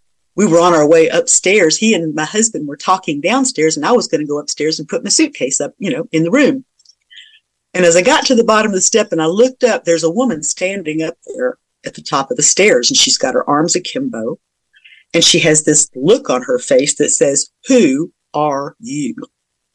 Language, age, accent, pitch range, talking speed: English, 50-69, American, 155-245 Hz, 230 wpm